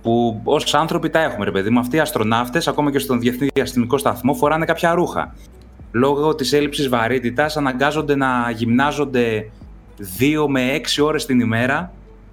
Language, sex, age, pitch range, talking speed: Greek, male, 20-39, 115-145 Hz, 160 wpm